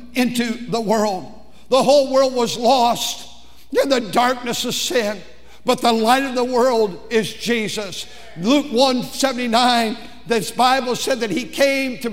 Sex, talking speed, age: male, 150 wpm, 60-79